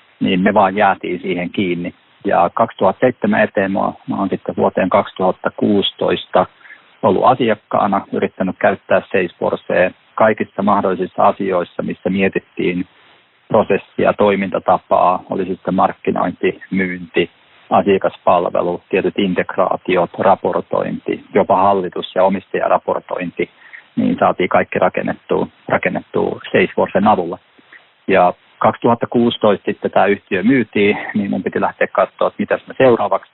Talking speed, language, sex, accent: 105 wpm, Finnish, male, native